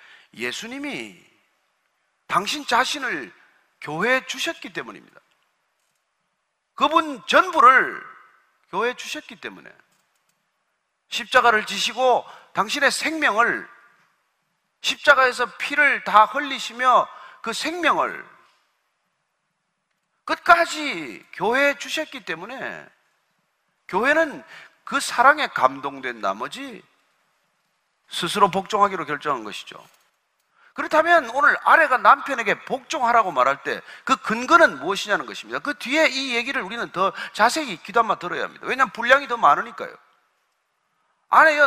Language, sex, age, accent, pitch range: Korean, male, 40-59, native, 220-295 Hz